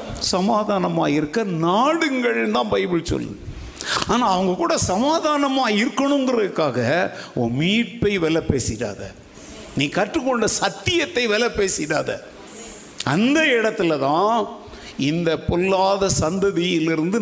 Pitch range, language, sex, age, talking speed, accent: 145-210 Hz, Tamil, male, 60-79, 85 wpm, native